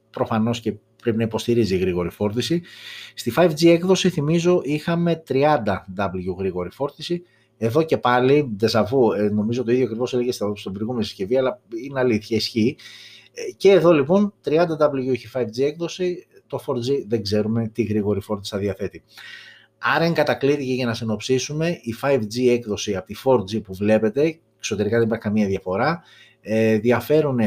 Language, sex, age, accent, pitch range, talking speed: Greek, male, 30-49, native, 105-150 Hz, 145 wpm